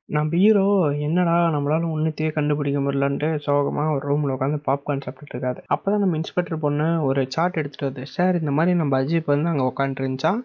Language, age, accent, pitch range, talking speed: Tamil, 20-39, native, 140-185 Hz, 180 wpm